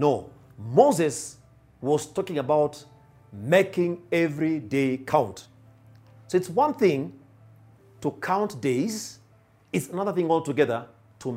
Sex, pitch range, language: male, 120-180 Hz, English